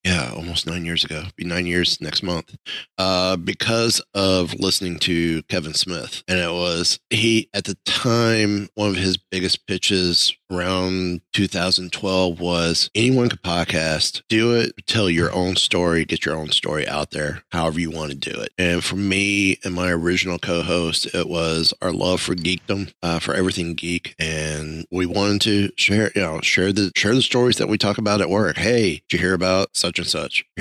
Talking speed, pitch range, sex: 190 wpm, 85-100 Hz, male